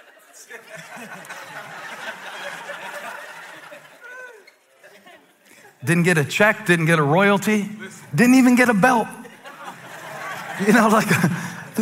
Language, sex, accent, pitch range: English, male, American, 135-215 Hz